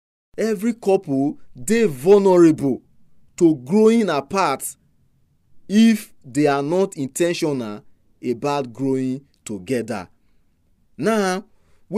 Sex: male